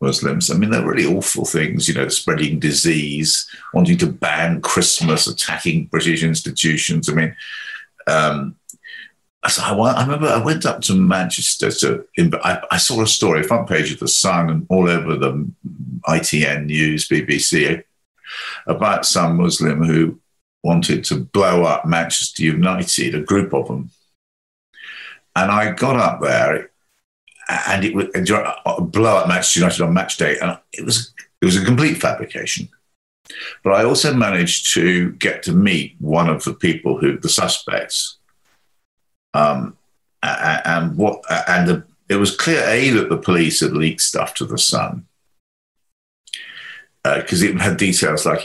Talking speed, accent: 155 wpm, British